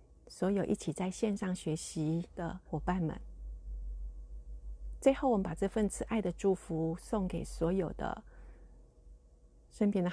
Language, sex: Chinese, female